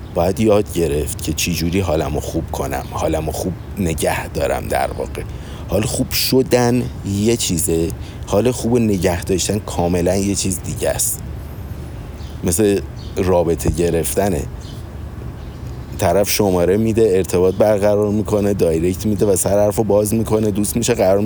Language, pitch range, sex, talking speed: Persian, 90-110 Hz, male, 135 wpm